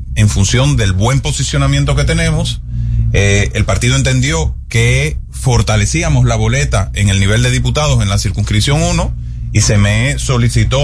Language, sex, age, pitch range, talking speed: Spanish, male, 30-49, 100-135 Hz, 155 wpm